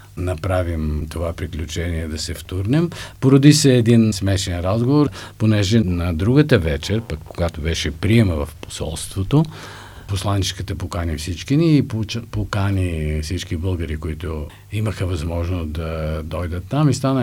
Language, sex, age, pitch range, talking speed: Bulgarian, male, 50-69, 90-130 Hz, 130 wpm